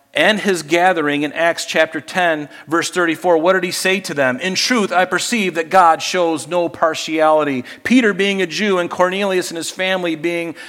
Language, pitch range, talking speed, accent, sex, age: English, 130-185 Hz, 190 wpm, American, male, 50-69